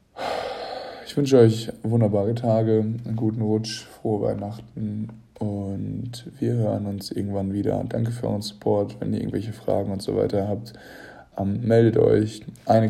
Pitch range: 105-115 Hz